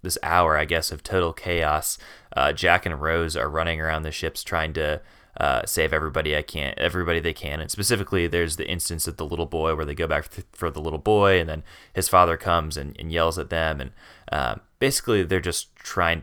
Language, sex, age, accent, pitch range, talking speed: English, male, 20-39, American, 80-90 Hz, 225 wpm